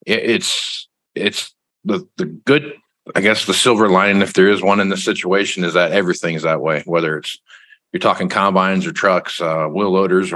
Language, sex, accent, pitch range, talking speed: English, male, American, 85-100 Hz, 190 wpm